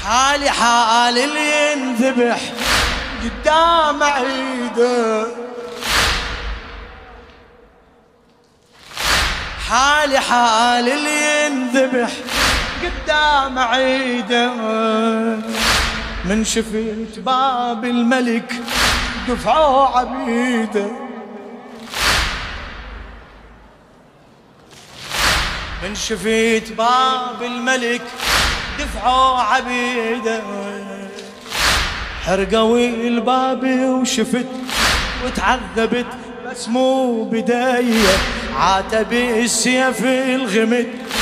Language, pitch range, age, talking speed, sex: Arabic, 225-260 Hz, 30-49, 50 wpm, male